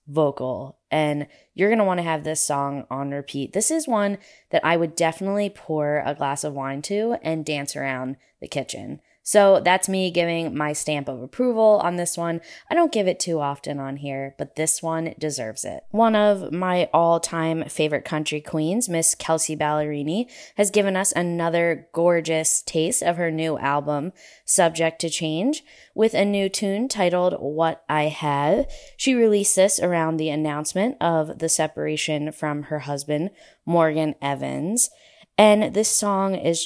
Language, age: English, 20-39